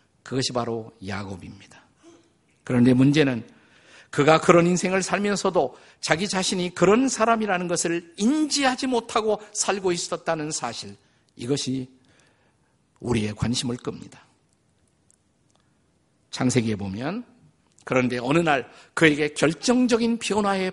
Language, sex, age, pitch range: Korean, male, 50-69, 135-200 Hz